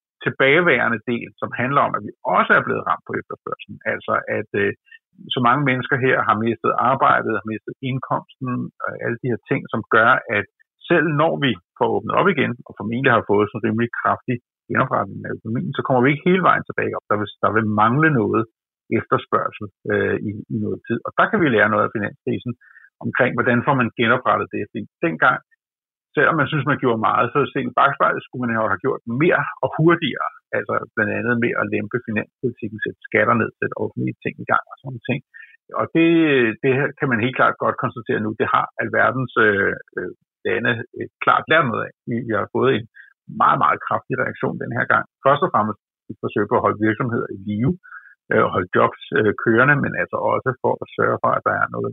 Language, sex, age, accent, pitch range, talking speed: Danish, male, 50-69, native, 110-145 Hz, 200 wpm